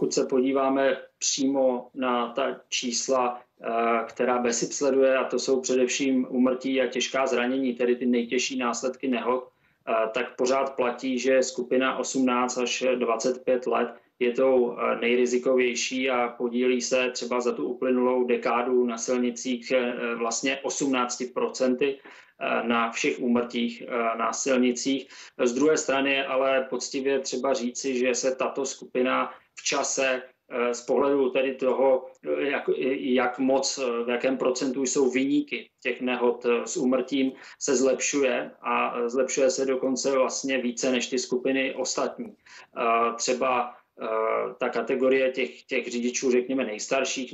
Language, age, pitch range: Czech, 20-39, 125-130 Hz